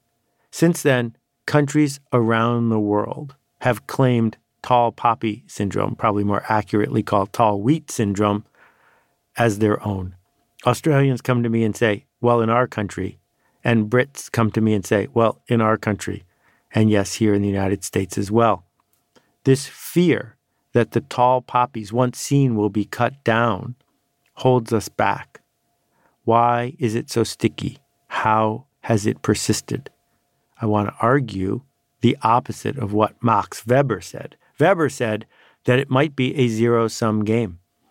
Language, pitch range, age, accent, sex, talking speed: English, 110-130 Hz, 50-69, American, male, 150 wpm